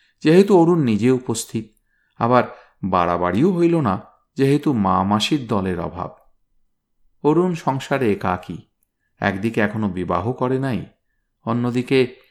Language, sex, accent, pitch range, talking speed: Bengali, male, native, 100-140 Hz, 105 wpm